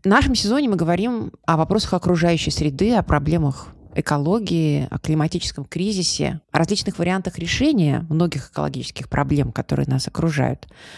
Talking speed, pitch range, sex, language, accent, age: 135 wpm, 140-180 Hz, female, Russian, native, 30-49